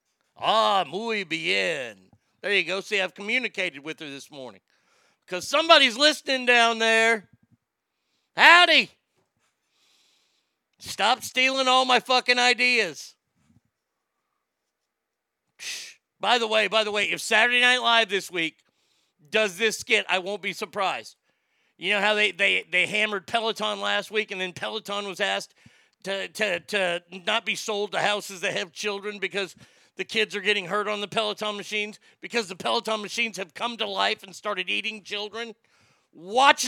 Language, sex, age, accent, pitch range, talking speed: English, male, 40-59, American, 180-220 Hz, 150 wpm